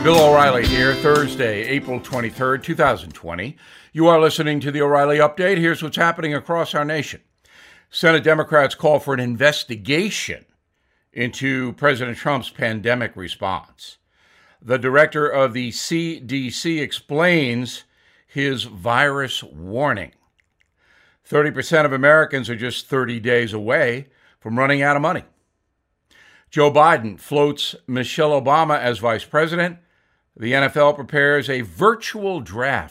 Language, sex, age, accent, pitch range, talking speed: English, male, 60-79, American, 120-150 Hz, 120 wpm